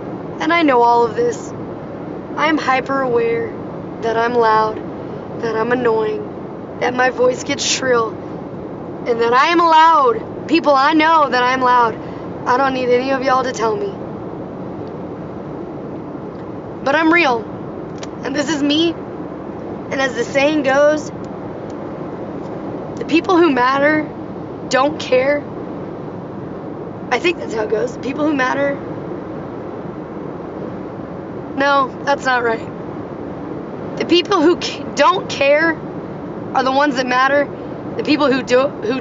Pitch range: 240-290 Hz